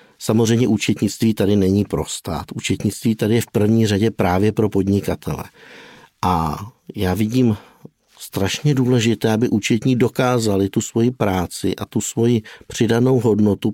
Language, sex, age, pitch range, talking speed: Czech, male, 50-69, 100-115 Hz, 130 wpm